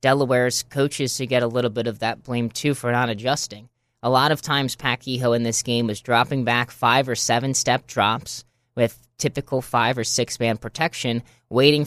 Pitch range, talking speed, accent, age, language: 120-140 Hz, 185 wpm, American, 20-39, English